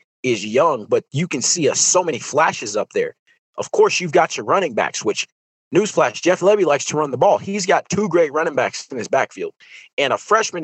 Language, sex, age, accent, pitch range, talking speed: English, male, 30-49, American, 135-200 Hz, 230 wpm